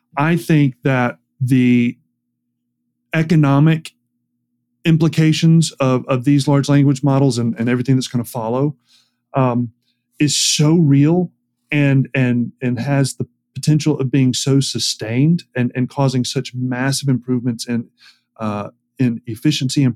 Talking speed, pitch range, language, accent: 130 wpm, 120-140 Hz, English, American